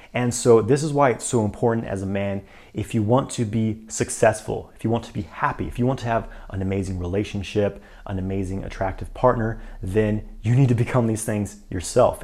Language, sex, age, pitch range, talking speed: English, male, 30-49, 100-120 Hz, 210 wpm